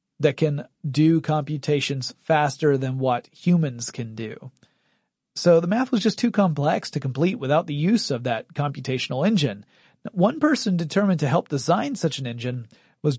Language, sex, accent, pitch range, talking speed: English, male, American, 135-170 Hz, 165 wpm